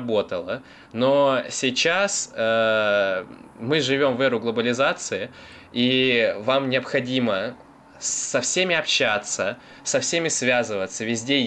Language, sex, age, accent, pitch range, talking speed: Russian, male, 20-39, native, 110-140 Hz, 95 wpm